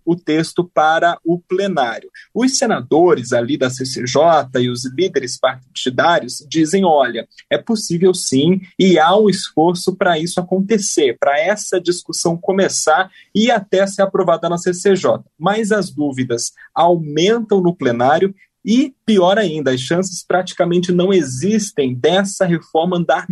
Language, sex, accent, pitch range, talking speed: Portuguese, male, Brazilian, 145-190 Hz, 135 wpm